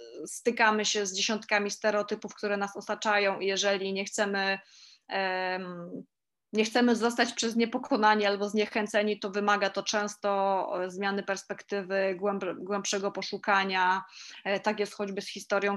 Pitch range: 195-230 Hz